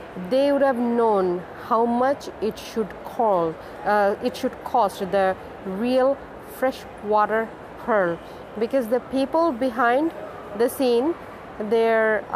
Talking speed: 120 wpm